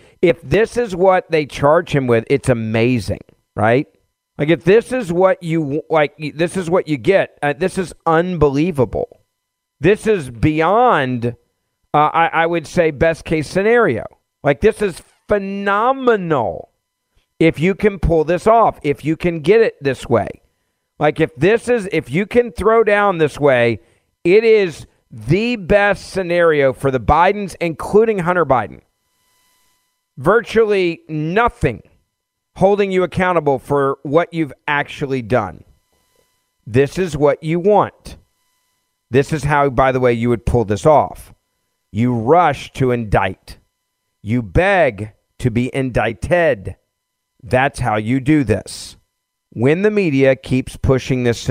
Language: English